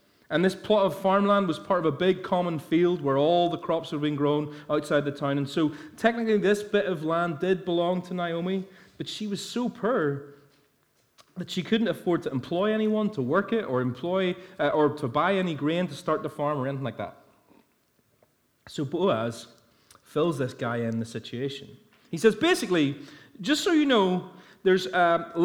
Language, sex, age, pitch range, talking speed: English, male, 30-49, 145-205 Hz, 190 wpm